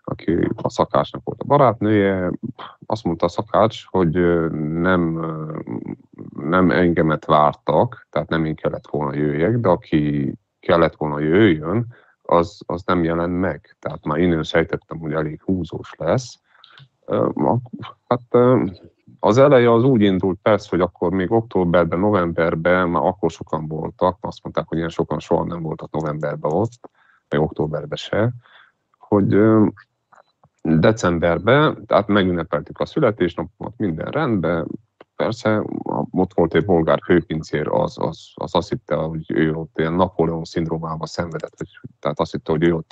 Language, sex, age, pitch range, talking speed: Hungarian, male, 30-49, 80-100 Hz, 140 wpm